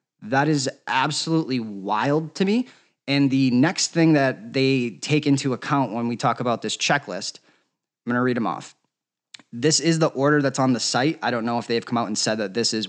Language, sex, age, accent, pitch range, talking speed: English, male, 20-39, American, 115-145 Hz, 220 wpm